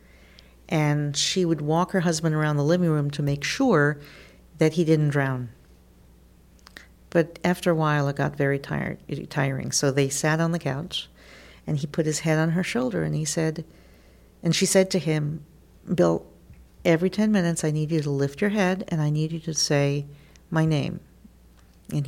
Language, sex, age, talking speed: English, female, 50-69, 180 wpm